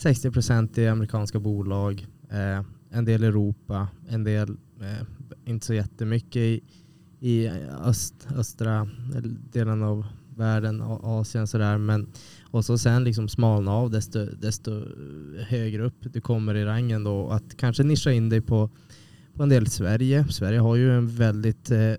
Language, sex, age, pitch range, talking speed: Swedish, male, 20-39, 105-120 Hz, 140 wpm